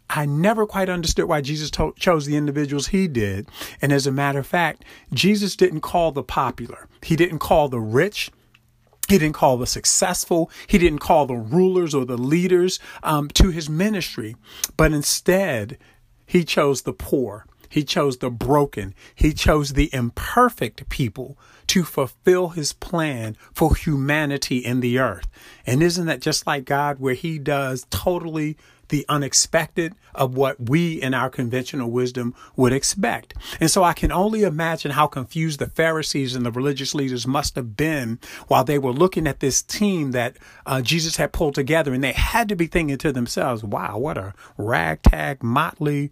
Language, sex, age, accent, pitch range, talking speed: English, male, 50-69, American, 130-170 Hz, 175 wpm